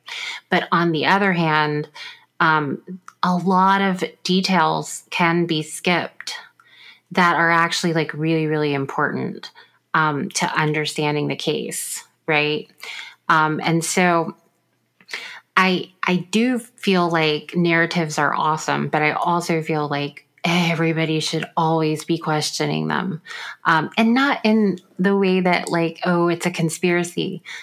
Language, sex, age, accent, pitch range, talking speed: English, female, 30-49, American, 155-185 Hz, 130 wpm